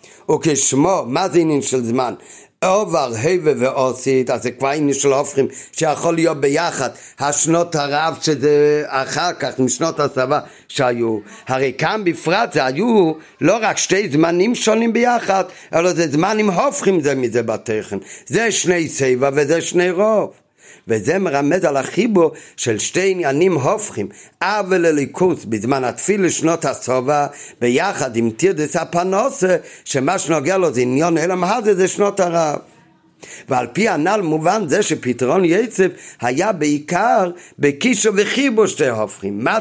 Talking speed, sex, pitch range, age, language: 140 wpm, male, 130-175 Hz, 50-69, Hebrew